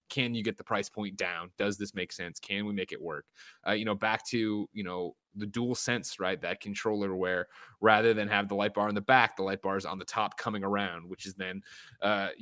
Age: 20-39